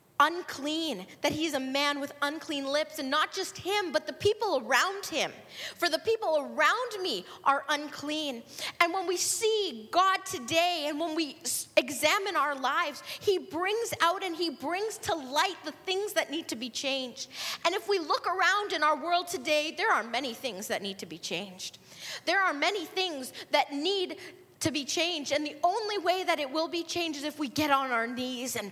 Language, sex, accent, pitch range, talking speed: English, female, American, 280-360 Hz, 200 wpm